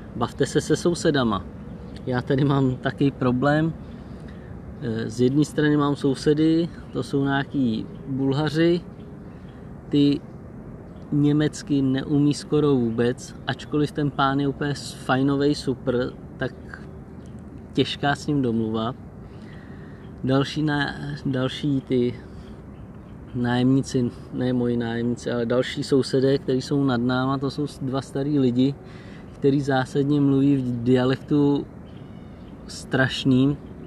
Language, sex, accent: Czech, male, native